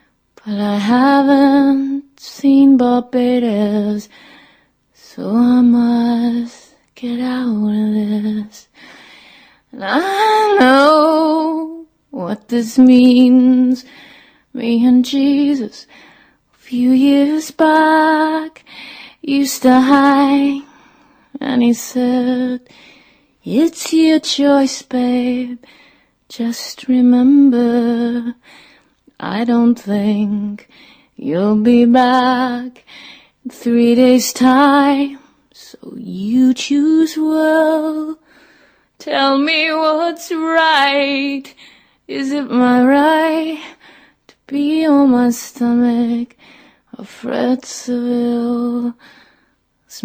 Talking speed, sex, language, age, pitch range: 80 wpm, female, Greek, 20-39, 245-285 Hz